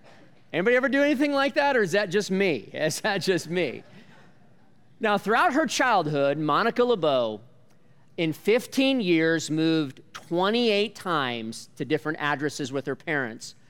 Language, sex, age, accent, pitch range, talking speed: English, male, 40-59, American, 155-225 Hz, 145 wpm